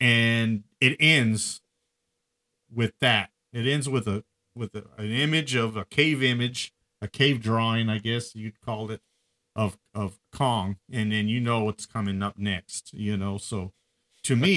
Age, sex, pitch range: 40-59, male, 100-130 Hz